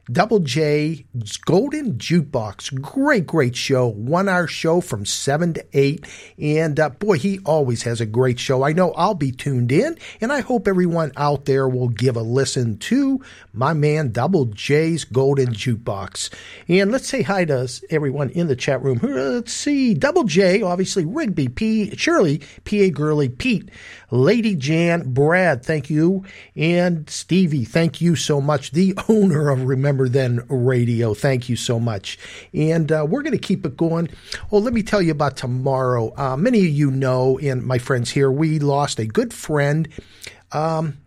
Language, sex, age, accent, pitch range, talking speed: English, male, 50-69, American, 125-175 Hz, 170 wpm